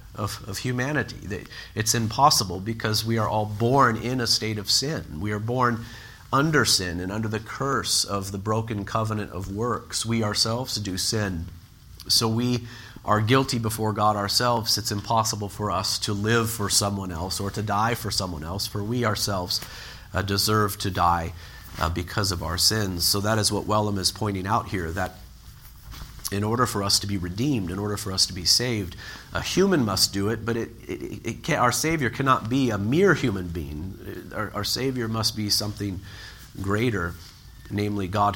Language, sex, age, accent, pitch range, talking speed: English, male, 40-59, American, 95-115 Hz, 175 wpm